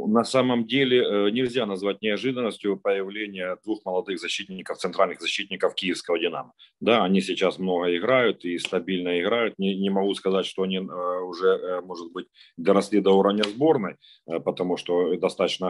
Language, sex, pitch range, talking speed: Ukrainian, male, 90-110 Hz, 145 wpm